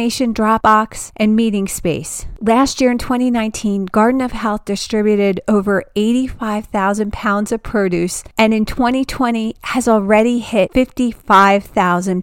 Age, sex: 40-59, female